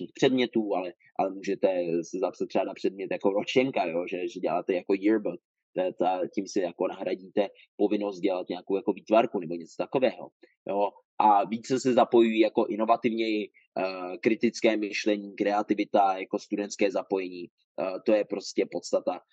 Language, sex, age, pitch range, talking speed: Czech, male, 20-39, 100-130 Hz, 150 wpm